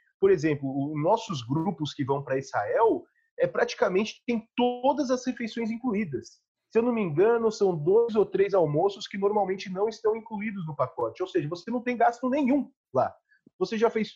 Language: Portuguese